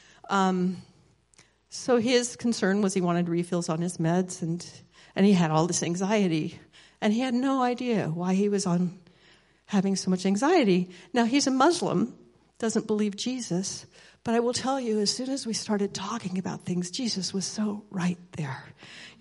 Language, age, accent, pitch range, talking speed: English, 50-69, American, 180-225 Hz, 180 wpm